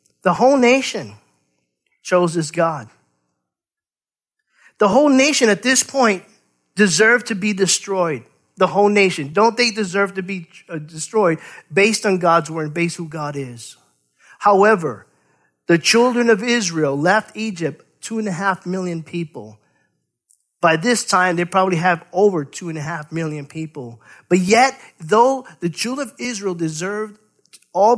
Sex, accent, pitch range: male, American, 155-215 Hz